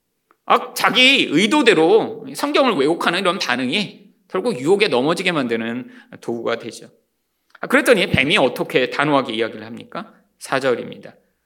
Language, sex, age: Korean, male, 40-59